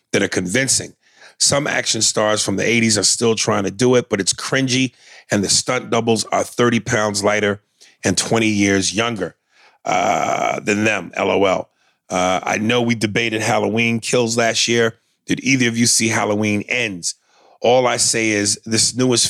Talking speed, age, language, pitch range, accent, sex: 175 wpm, 40-59, English, 105-120 Hz, American, male